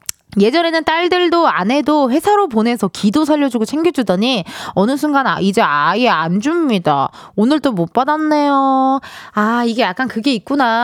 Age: 20-39